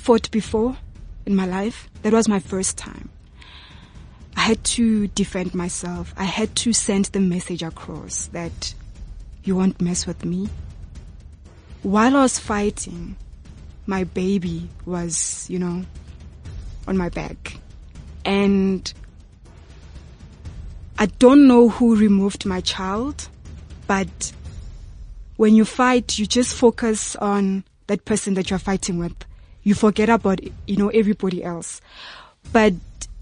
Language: English